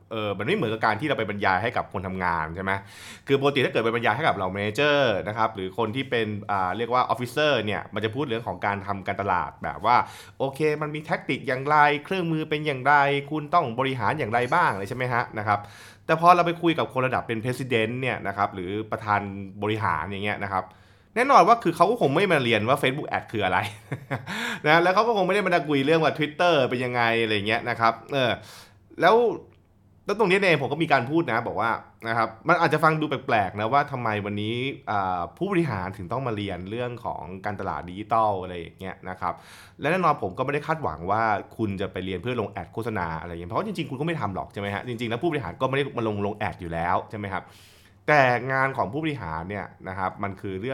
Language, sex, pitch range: Thai, male, 100-140 Hz